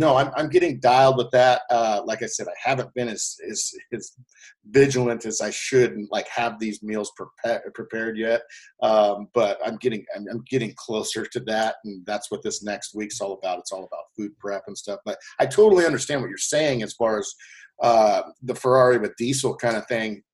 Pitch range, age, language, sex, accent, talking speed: 110-130 Hz, 40-59, English, male, American, 210 wpm